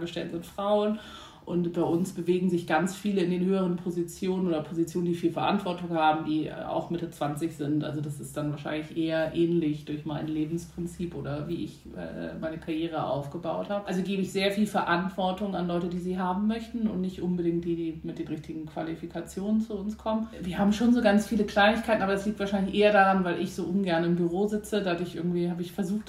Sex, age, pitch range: female, 30-49, 170-195 Hz